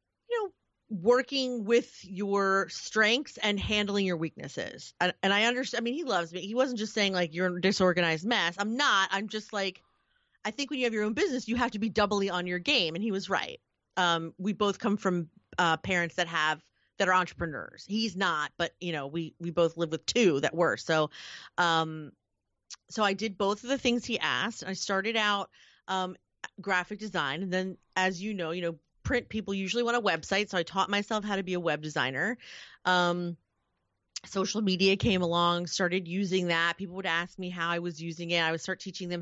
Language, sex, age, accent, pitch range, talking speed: English, female, 30-49, American, 170-220 Hz, 210 wpm